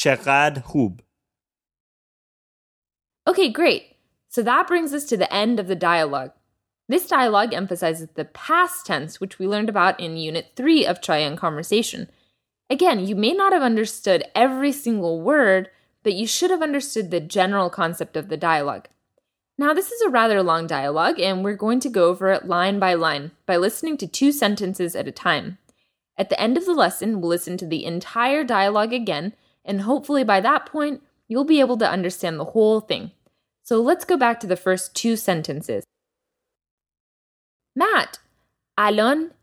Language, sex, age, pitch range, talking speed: English, female, 10-29, 170-265 Hz, 165 wpm